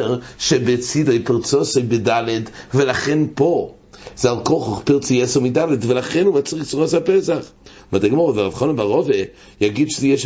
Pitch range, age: 120-185 Hz, 60-79